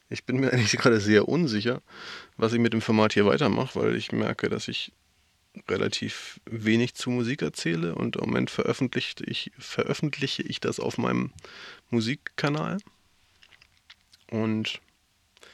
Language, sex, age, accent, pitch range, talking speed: German, male, 20-39, German, 95-120 Hz, 130 wpm